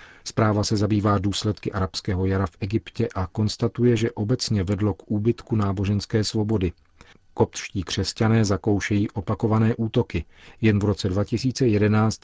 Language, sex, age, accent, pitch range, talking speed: Czech, male, 40-59, native, 95-110 Hz, 125 wpm